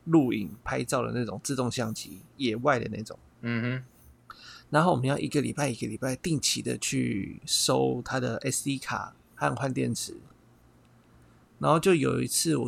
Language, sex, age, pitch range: Chinese, male, 30-49, 95-145 Hz